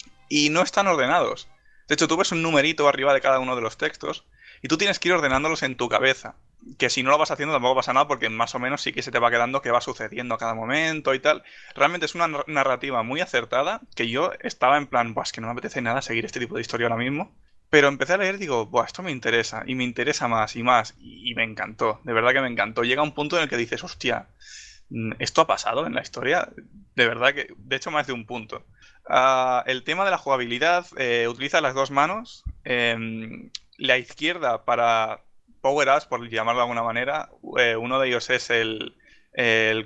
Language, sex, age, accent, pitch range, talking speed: Spanish, male, 20-39, Spanish, 115-145 Hz, 230 wpm